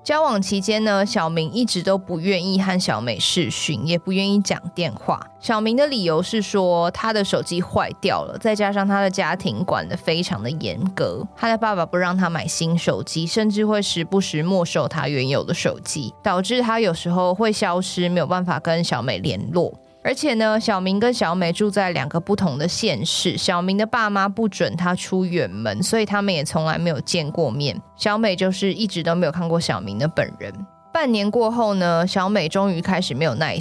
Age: 20-39